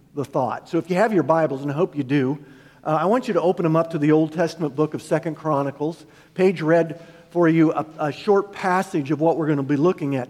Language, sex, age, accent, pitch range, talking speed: English, male, 50-69, American, 150-200 Hz, 260 wpm